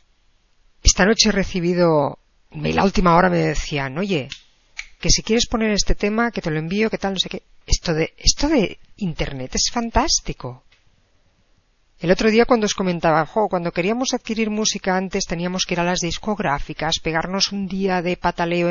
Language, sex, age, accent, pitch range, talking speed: Spanish, female, 50-69, Spanish, 155-205 Hz, 180 wpm